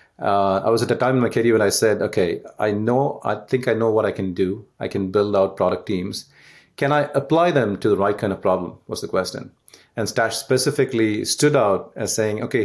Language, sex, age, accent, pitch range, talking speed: English, male, 40-59, Indian, 105-130 Hz, 235 wpm